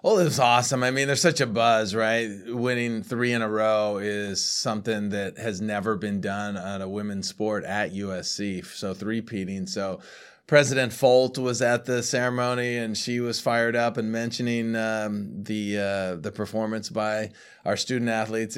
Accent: American